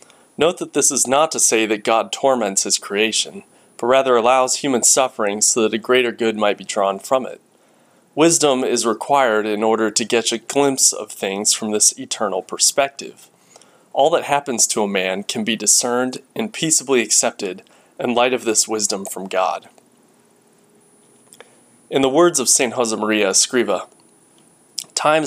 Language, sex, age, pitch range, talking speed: English, male, 30-49, 110-135 Hz, 165 wpm